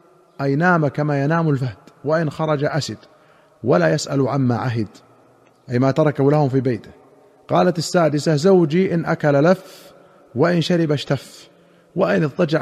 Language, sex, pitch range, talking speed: Arabic, male, 145-175 Hz, 140 wpm